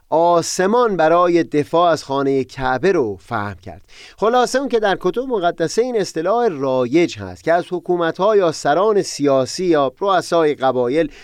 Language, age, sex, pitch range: Persian, 30-49, male, 130-170 Hz